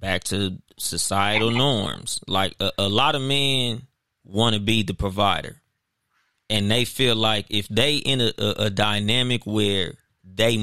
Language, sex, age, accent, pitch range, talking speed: English, male, 20-39, American, 105-125 Hz, 160 wpm